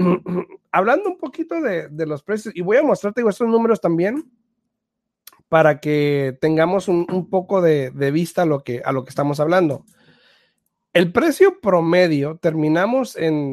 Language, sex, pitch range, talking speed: Spanish, male, 160-220 Hz, 150 wpm